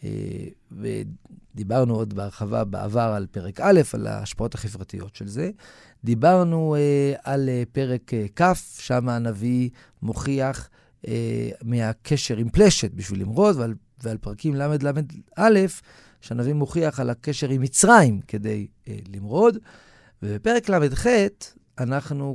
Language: Hebrew